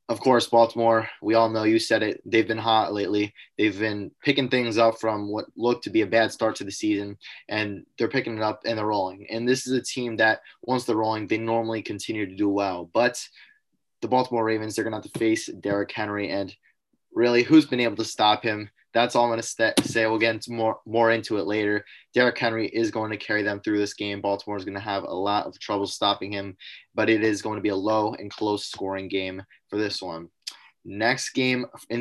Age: 20-39